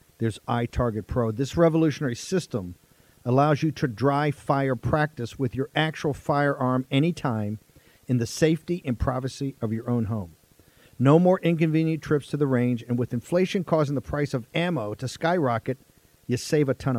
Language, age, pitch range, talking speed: English, 50-69, 125-160 Hz, 165 wpm